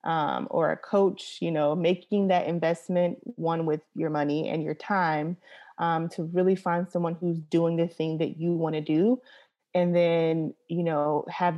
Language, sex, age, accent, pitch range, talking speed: English, female, 30-49, American, 155-180 Hz, 180 wpm